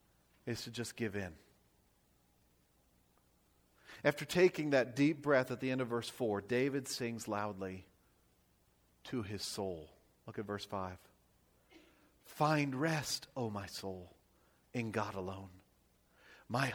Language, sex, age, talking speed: English, male, 40-59, 125 wpm